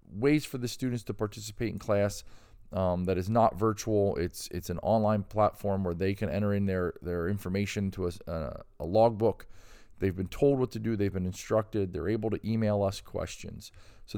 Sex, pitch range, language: male, 100-125 Hz, English